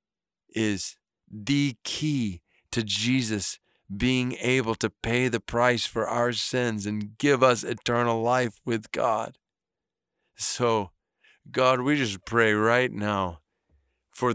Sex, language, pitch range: male, English, 115-150 Hz